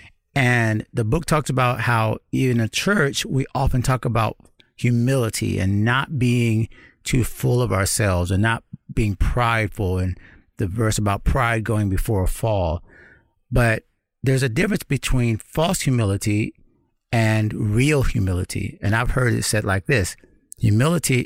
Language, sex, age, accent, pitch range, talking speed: English, male, 50-69, American, 110-130 Hz, 145 wpm